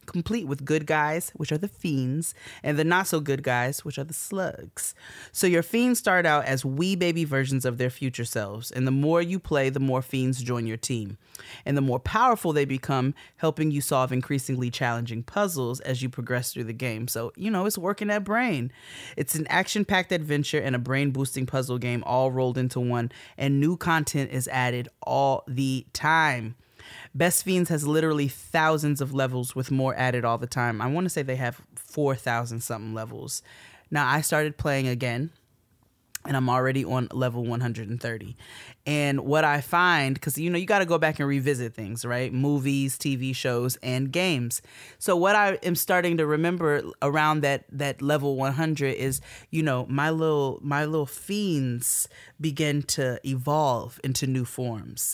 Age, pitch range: 30-49, 125-155 Hz